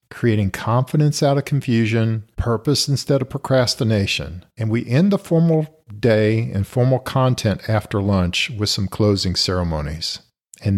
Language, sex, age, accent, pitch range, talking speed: English, male, 50-69, American, 100-135 Hz, 140 wpm